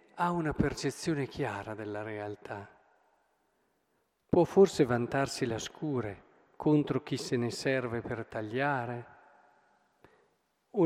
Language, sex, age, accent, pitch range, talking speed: Italian, male, 50-69, native, 125-175 Hz, 105 wpm